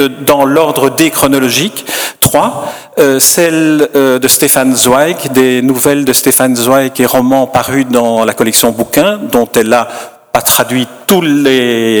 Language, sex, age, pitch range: French, male, 50-69, 120-140 Hz